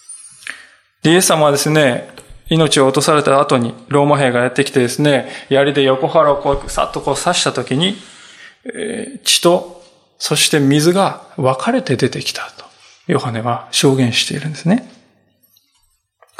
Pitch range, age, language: 130-180 Hz, 20-39, Japanese